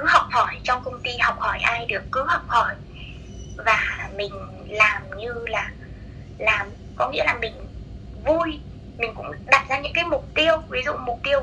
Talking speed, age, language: 190 wpm, 20-39, Vietnamese